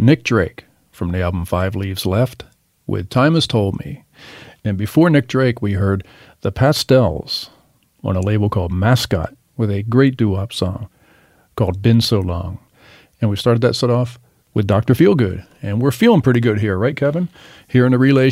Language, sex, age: English, male, 50-69